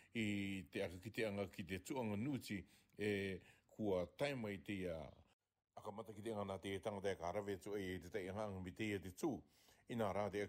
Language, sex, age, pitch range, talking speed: English, male, 60-79, 90-110 Hz, 155 wpm